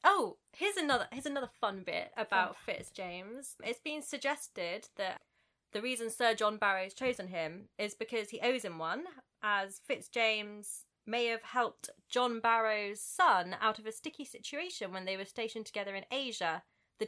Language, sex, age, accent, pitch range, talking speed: English, female, 20-39, British, 195-260 Hz, 165 wpm